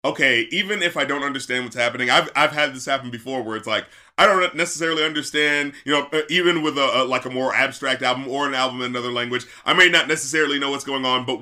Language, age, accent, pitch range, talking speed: English, 30-49, American, 125-150 Hz, 245 wpm